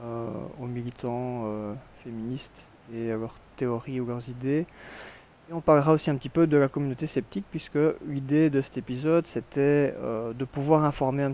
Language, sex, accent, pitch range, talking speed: French, male, French, 115-135 Hz, 175 wpm